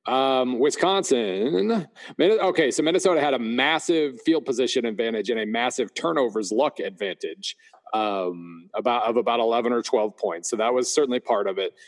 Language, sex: English, male